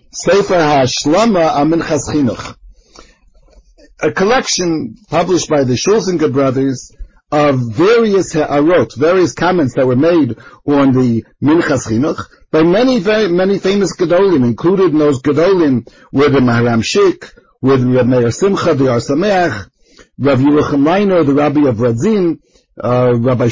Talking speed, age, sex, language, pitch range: 120 wpm, 60-79, male, English, 130-175 Hz